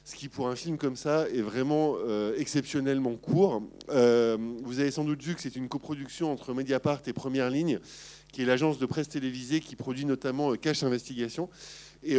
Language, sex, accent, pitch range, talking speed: French, male, French, 125-150 Hz, 195 wpm